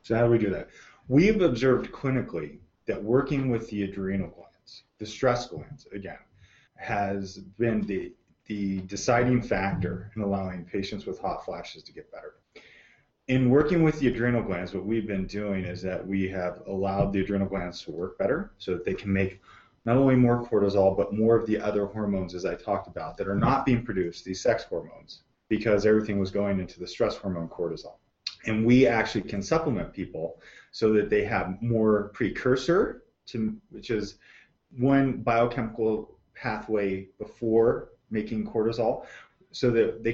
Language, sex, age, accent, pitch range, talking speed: English, male, 30-49, American, 95-120 Hz, 170 wpm